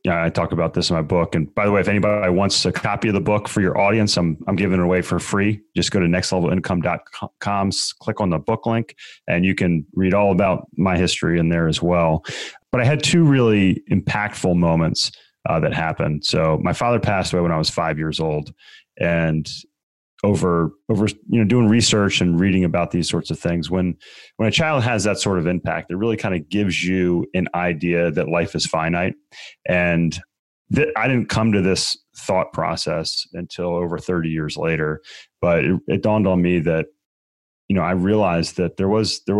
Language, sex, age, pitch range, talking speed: English, male, 30-49, 85-100 Hz, 205 wpm